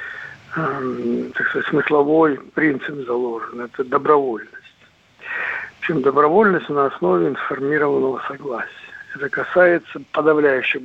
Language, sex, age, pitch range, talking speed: Russian, male, 60-79, 135-190 Hz, 90 wpm